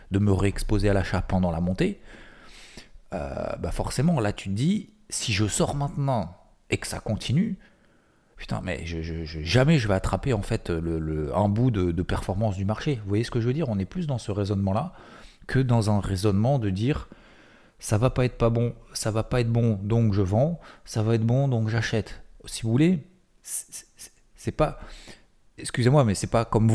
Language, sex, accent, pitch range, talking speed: French, male, French, 95-125 Hz, 215 wpm